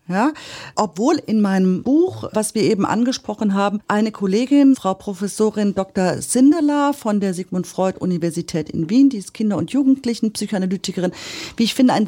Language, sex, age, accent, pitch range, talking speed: German, female, 40-59, German, 185-235 Hz, 165 wpm